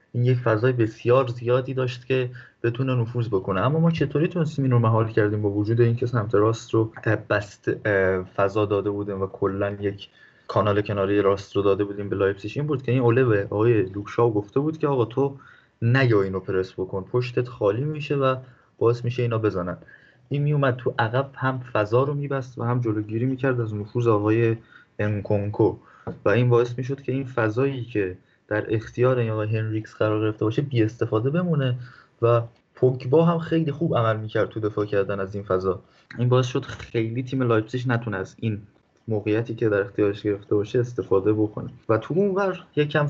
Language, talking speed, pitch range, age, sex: Persian, 190 wpm, 105-130 Hz, 20-39, male